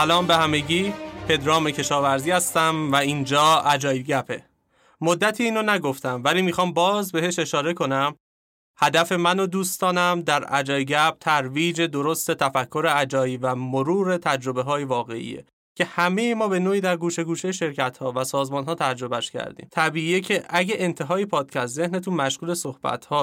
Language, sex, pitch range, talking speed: Persian, male, 135-175 Hz, 150 wpm